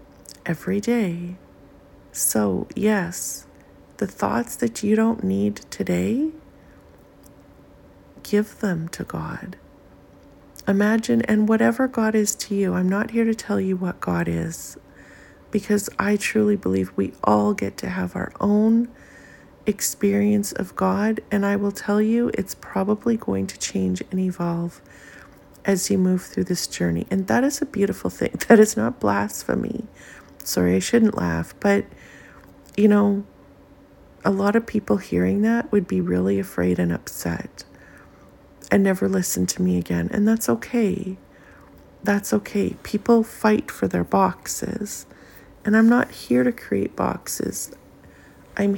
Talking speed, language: 145 wpm, English